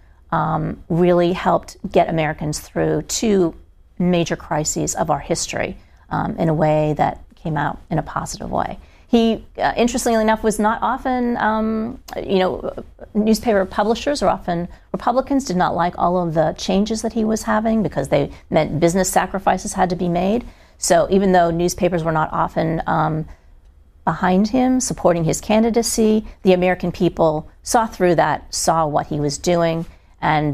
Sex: female